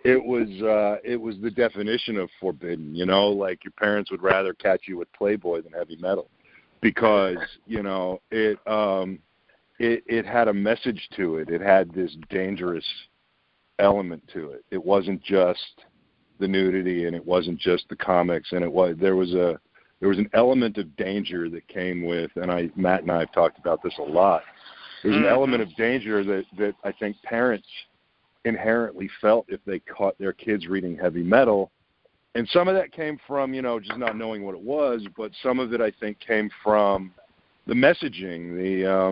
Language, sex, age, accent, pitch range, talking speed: English, male, 50-69, American, 90-110 Hz, 190 wpm